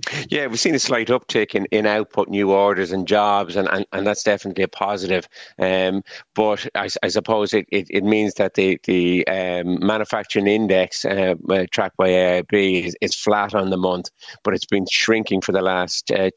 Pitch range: 95-105 Hz